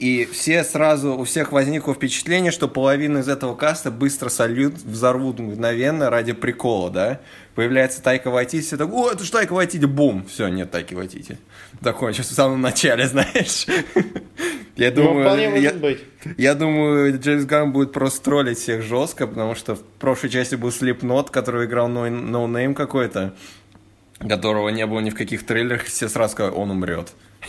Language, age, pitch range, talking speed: Russian, 20-39, 105-140 Hz, 160 wpm